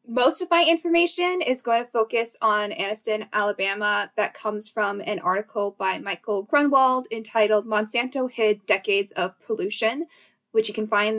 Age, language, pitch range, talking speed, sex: 10-29, English, 210-255 Hz, 155 wpm, female